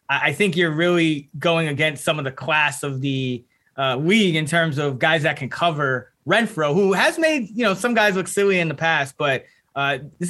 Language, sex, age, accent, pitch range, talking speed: English, male, 20-39, American, 140-175 Hz, 215 wpm